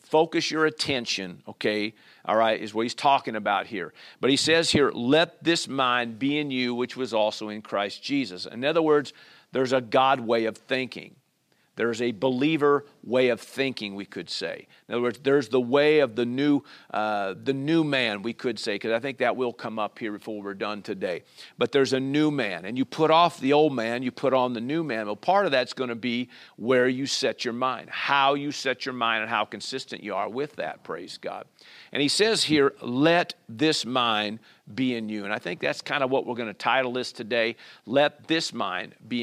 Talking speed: 225 wpm